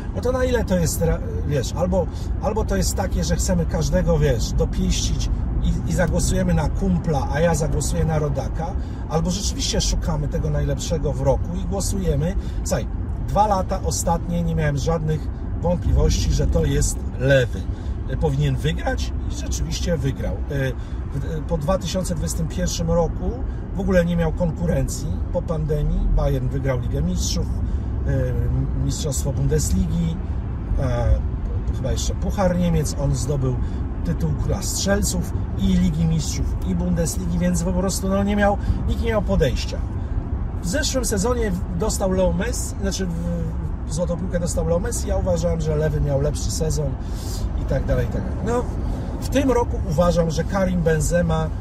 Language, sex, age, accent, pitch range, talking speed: Polish, male, 50-69, native, 85-100 Hz, 145 wpm